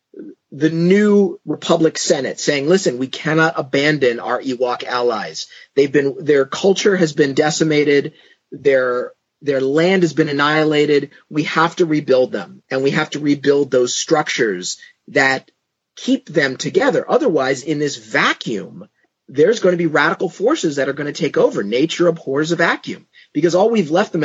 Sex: male